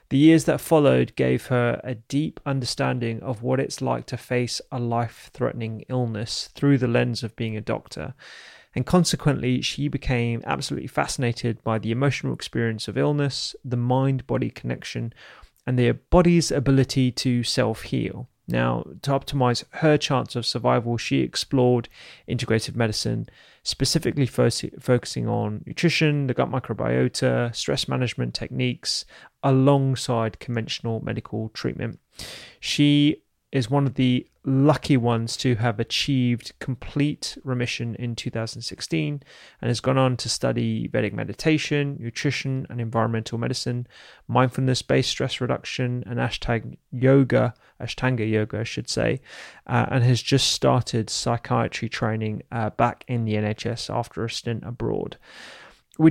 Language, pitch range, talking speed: English, 115-135 Hz, 135 wpm